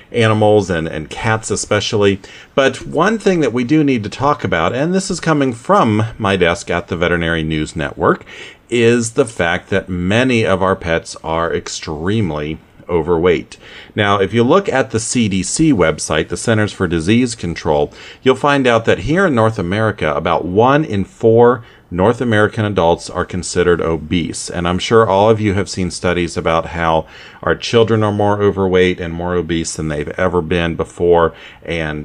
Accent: American